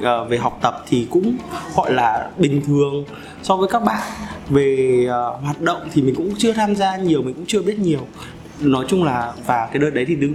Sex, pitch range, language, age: male, 140-190 Hz, Vietnamese, 20-39